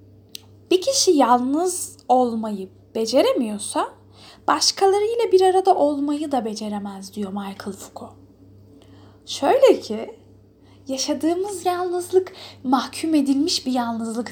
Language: Turkish